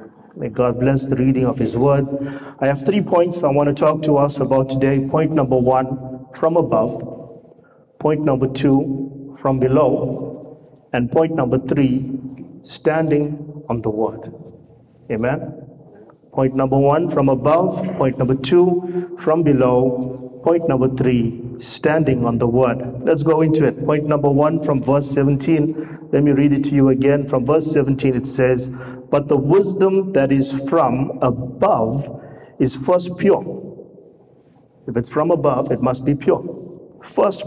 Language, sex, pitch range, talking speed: English, male, 130-155 Hz, 155 wpm